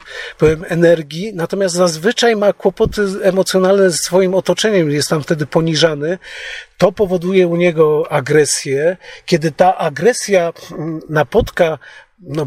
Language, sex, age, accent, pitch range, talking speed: Polish, male, 40-59, native, 150-180 Hz, 115 wpm